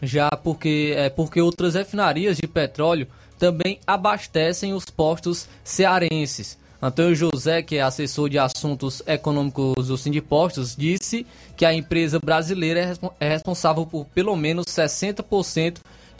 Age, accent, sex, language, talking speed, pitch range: 20-39, Brazilian, male, Portuguese, 125 wpm, 150-185 Hz